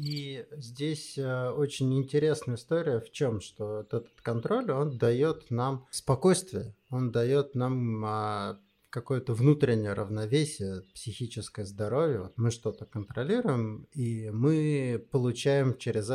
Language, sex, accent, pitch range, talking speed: Russian, male, native, 110-135 Hz, 115 wpm